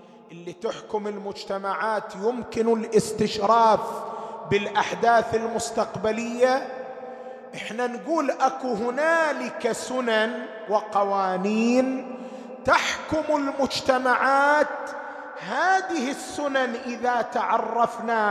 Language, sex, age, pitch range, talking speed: English, male, 30-49, 215-255 Hz, 60 wpm